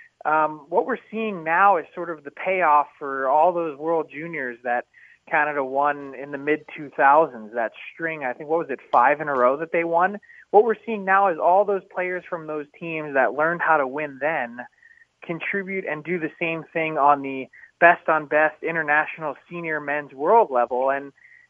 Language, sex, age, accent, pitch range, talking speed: English, male, 20-39, American, 145-185 Hz, 185 wpm